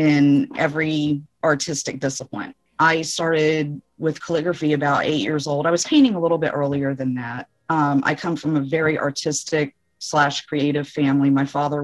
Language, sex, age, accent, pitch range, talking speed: Portuguese, female, 40-59, American, 140-160 Hz, 165 wpm